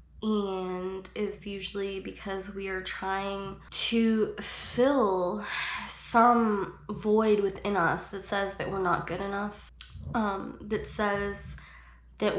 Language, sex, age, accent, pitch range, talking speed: English, female, 10-29, American, 185-210 Hz, 115 wpm